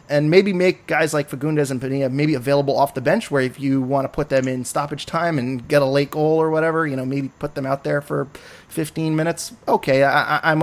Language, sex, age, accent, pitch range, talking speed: English, male, 20-39, American, 135-160 Hz, 235 wpm